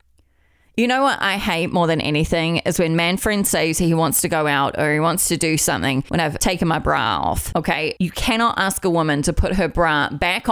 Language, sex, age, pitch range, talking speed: English, female, 30-49, 165-215 Hz, 235 wpm